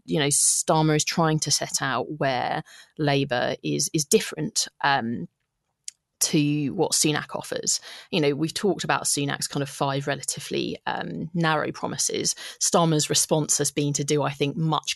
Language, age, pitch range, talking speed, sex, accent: English, 30-49, 150-170 Hz, 160 wpm, female, British